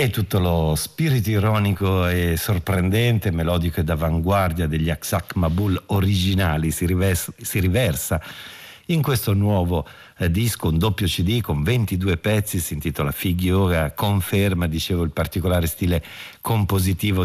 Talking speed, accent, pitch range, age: 130 wpm, native, 85-105 Hz, 50-69